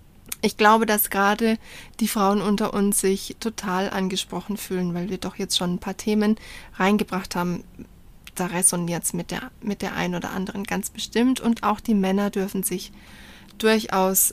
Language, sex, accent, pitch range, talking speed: German, female, German, 190-225 Hz, 170 wpm